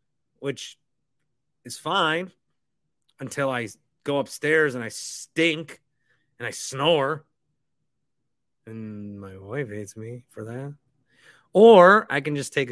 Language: English